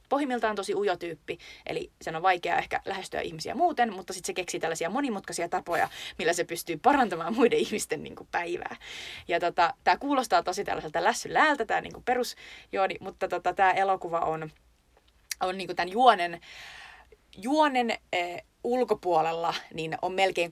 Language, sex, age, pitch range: Finnish, female, 30-49, 170-200 Hz